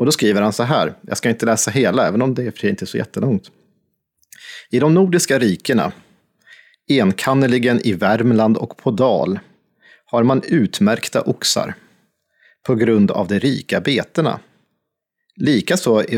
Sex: male